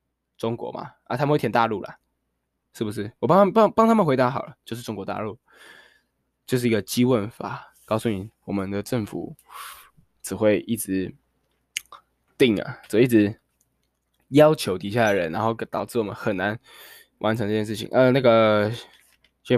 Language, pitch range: Chinese, 105-130 Hz